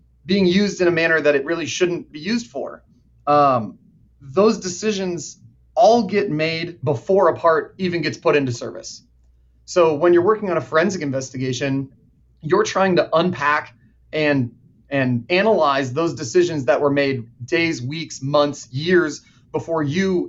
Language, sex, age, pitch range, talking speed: English, male, 30-49, 135-170 Hz, 155 wpm